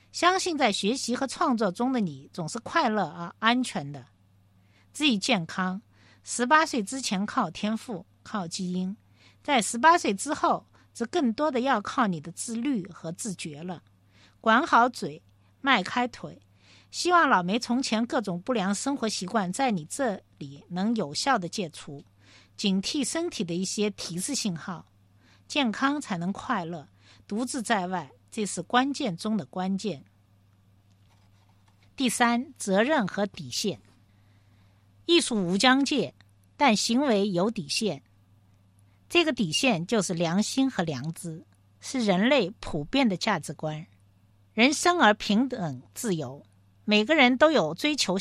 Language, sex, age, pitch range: Chinese, female, 50-69, 150-245 Hz